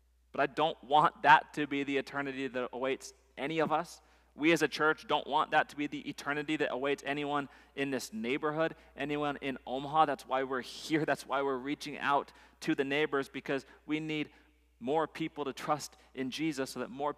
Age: 30-49